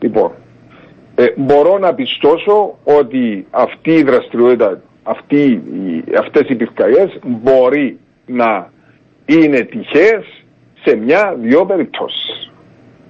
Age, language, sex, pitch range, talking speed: 50-69, Greek, male, 120-145 Hz, 95 wpm